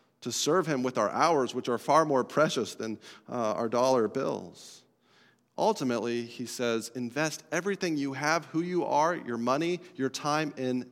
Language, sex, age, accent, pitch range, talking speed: English, male, 40-59, American, 125-170 Hz, 170 wpm